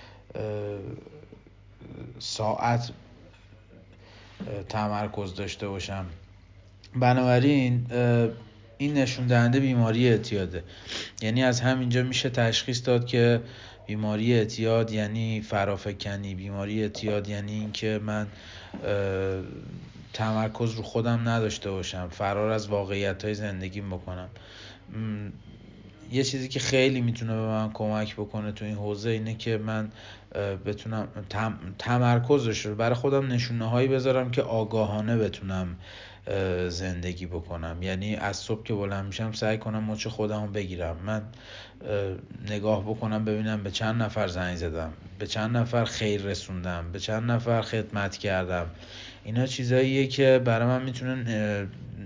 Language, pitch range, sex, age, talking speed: Persian, 100-115 Hz, male, 50-69, 120 wpm